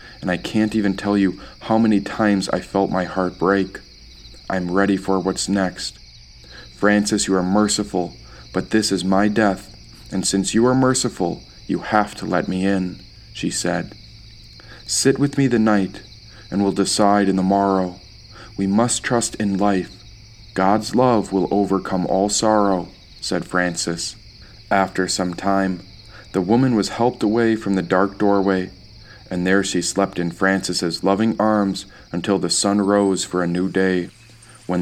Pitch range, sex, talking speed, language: 90-105 Hz, male, 160 wpm, English